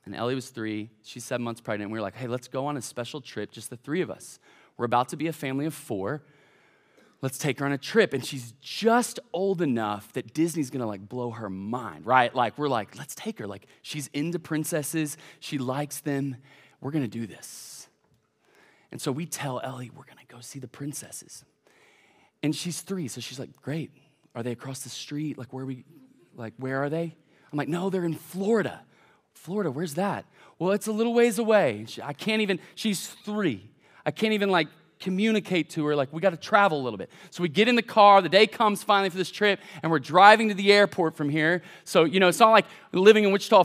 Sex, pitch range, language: male, 135-195 Hz, English